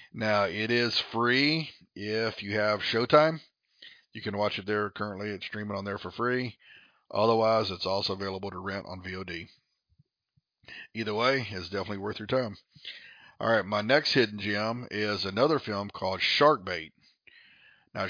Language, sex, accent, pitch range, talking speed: English, male, American, 100-115 Hz, 160 wpm